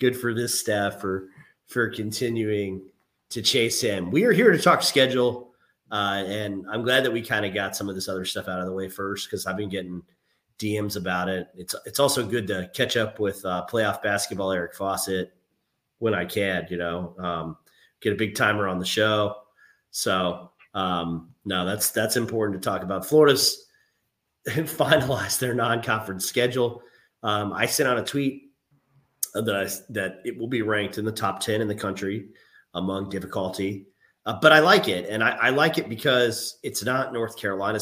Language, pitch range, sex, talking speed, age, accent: English, 95-125 Hz, male, 185 wpm, 30-49, American